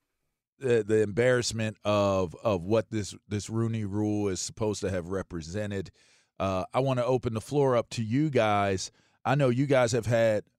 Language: English